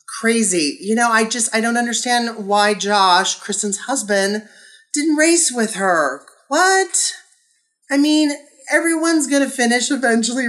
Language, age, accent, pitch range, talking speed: English, 30-49, American, 165-235 Hz, 135 wpm